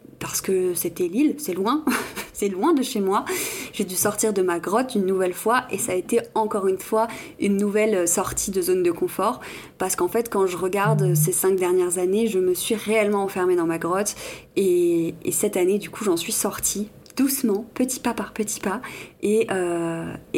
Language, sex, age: French, female, 20-39